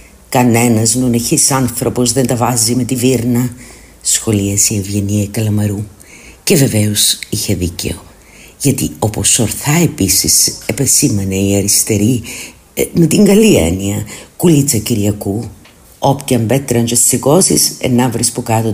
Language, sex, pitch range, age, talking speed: Greek, female, 100-125 Hz, 50-69, 120 wpm